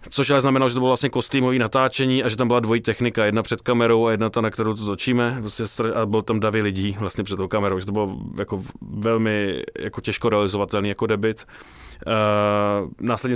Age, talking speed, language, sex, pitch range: 20-39, 205 wpm, Czech, male, 100-115 Hz